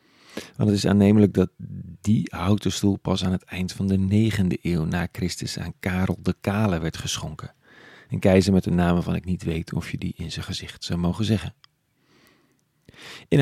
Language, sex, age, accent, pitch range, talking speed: Dutch, male, 40-59, Dutch, 90-110 Hz, 190 wpm